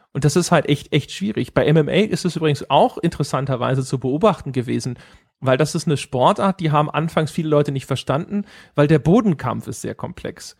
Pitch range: 135-175 Hz